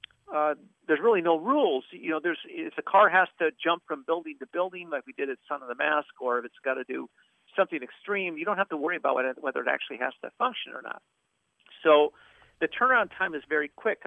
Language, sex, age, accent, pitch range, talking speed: English, male, 50-69, American, 135-170 Hz, 240 wpm